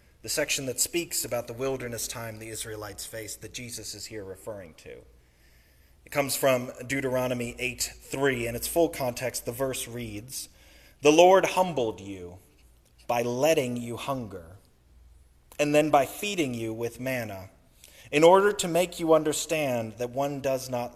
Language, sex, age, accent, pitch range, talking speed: English, male, 30-49, American, 95-135 Hz, 155 wpm